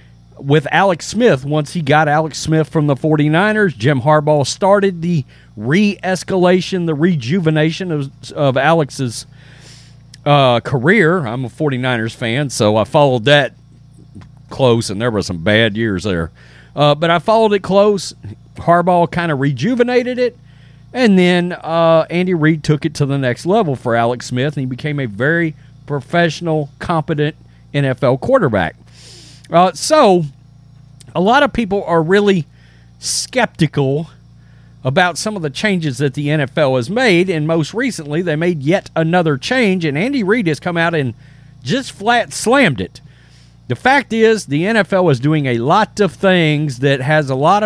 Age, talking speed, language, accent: 40-59, 160 wpm, English, American